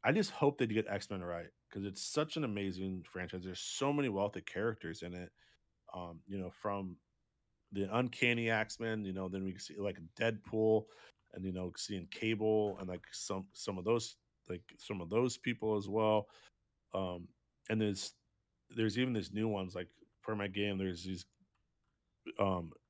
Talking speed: 175 wpm